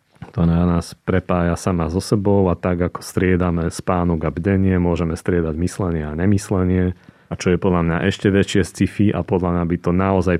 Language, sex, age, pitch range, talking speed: Slovak, male, 30-49, 80-90 Hz, 190 wpm